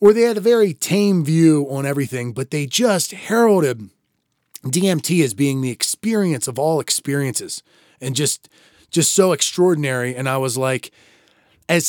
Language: English